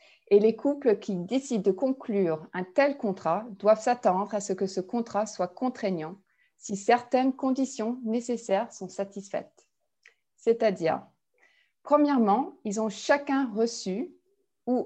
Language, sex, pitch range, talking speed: English, female, 200-245 Hz, 130 wpm